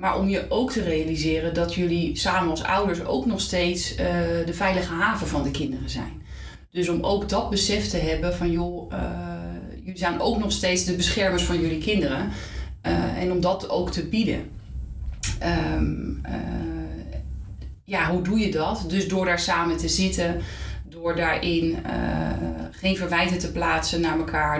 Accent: Dutch